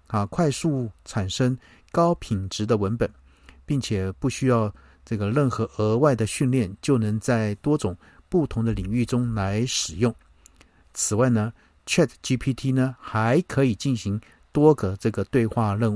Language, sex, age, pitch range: Chinese, male, 50-69, 100-135 Hz